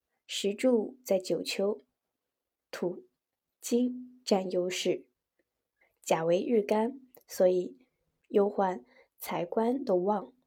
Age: 20-39